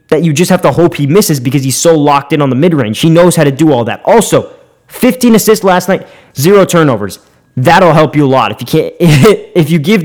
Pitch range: 140-180 Hz